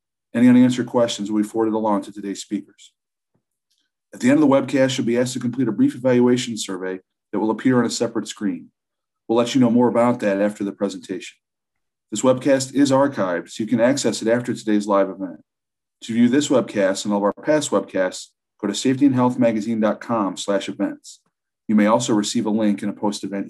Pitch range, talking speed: 105-145 Hz, 200 wpm